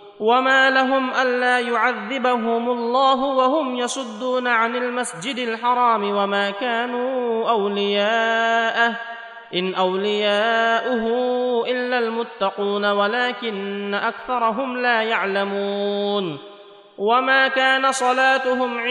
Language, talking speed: Arabic, 75 wpm